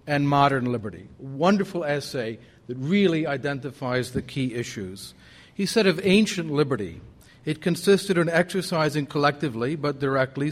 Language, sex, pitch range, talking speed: English, male, 125-155 Hz, 130 wpm